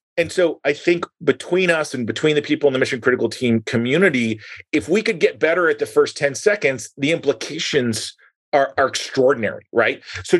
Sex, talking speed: male, 185 wpm